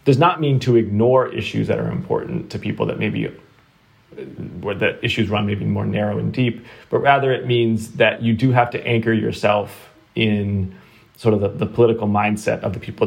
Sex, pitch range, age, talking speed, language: male, 105-120 Hz, 20-39, 200 wpm, English